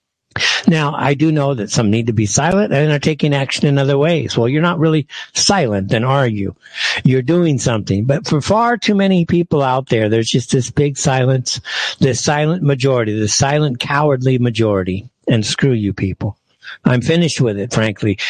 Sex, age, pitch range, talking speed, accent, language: male, 60-79, 140-190 Hz, 185 wpm, American, English